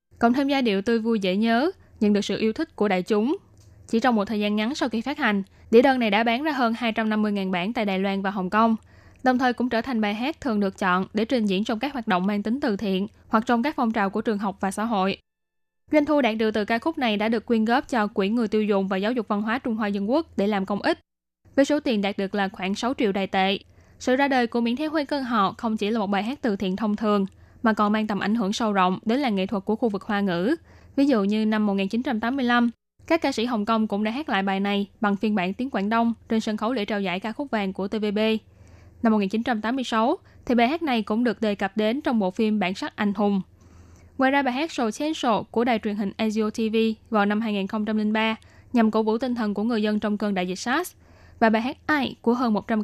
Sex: female